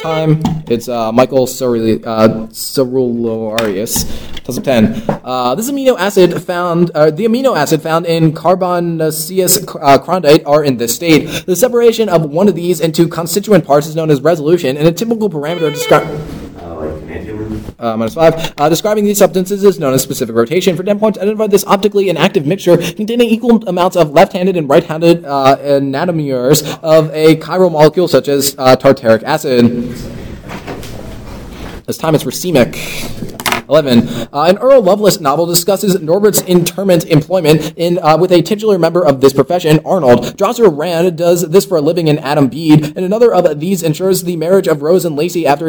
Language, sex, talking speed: English, male, 170 wpm